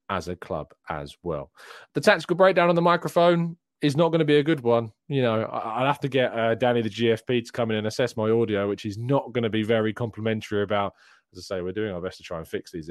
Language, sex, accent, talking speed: English, male, British, 265 wpm